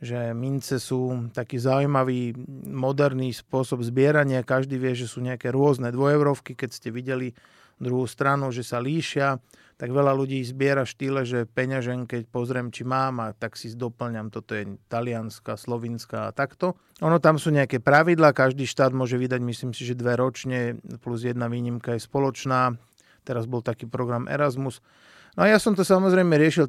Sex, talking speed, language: male, 170 wpm, Slovak